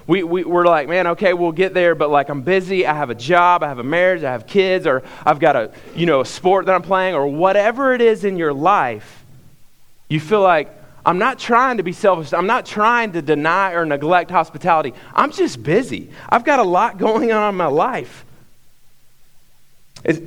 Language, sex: English, male